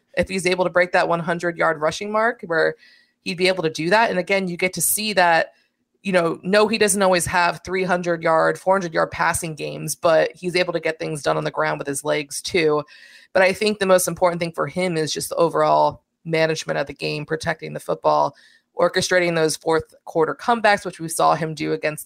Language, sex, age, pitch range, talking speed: English, female, 20-39, 160-190 Hz, 210 wpm